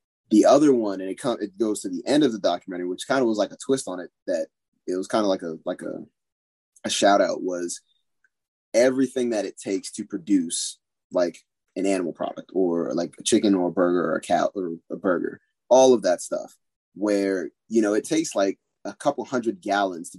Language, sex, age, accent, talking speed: English, male, 20-39, American, 220 wpm